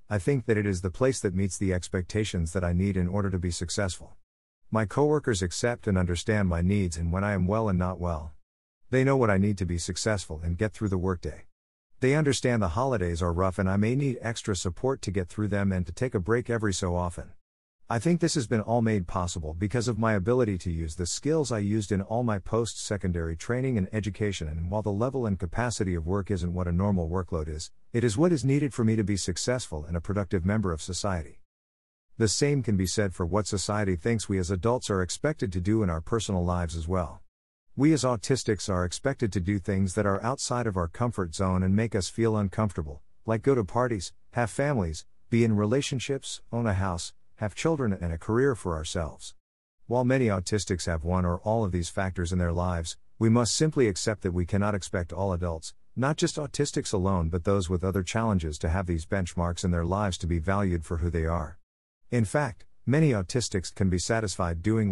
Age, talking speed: 50-69, 225 wpm